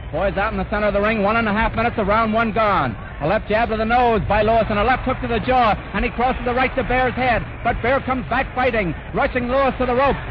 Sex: male